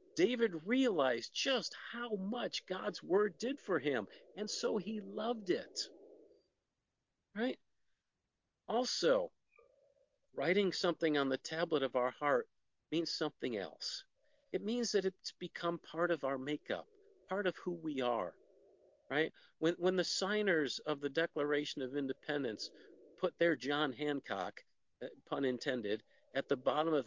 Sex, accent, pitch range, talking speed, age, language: male, American, 145-210 Hz, 135 wpm, 50-69, English